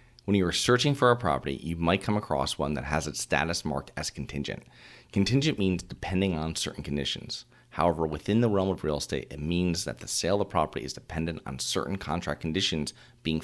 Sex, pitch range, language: male, 75-110 Hz, English